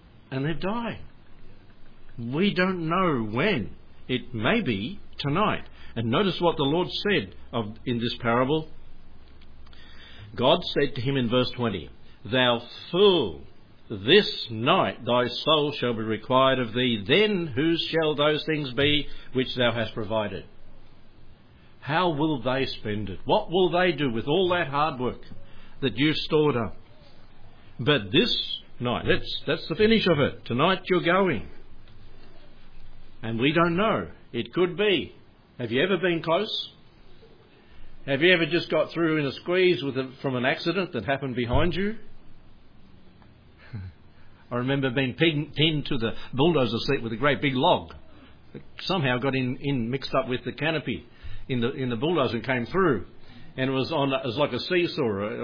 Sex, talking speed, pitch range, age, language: male, 155 wpm, 115-155 Hz, 60-79, English